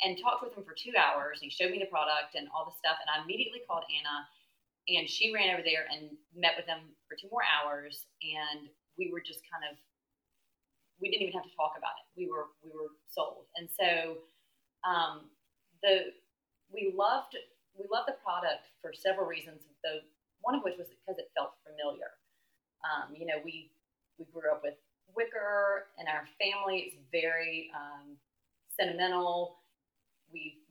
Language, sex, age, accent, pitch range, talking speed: English, female, 30-49, American, 155-190 Hz, 180 wpm